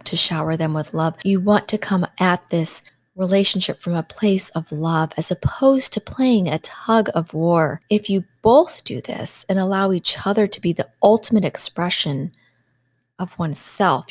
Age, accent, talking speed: 30-49, American, 175 wpm